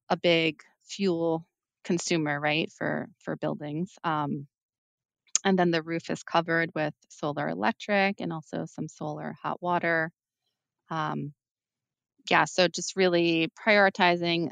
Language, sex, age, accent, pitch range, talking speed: English, female, 30-49, American, 150-175 Hz, 125 wpm